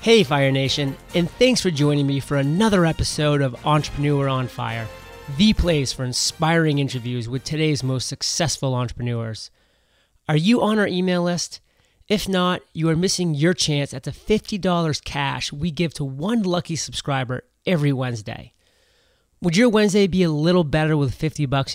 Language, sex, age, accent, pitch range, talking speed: English, male, 30-49, American, 130-180 Hz, 165 wpm